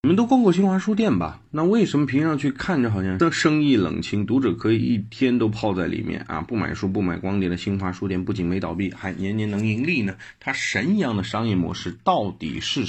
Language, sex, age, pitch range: Chinese, male, 30-49, 95-140 Hz